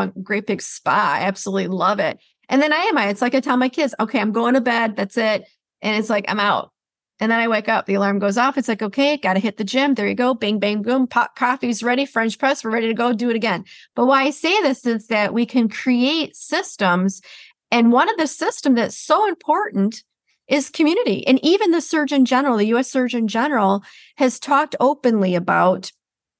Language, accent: English, American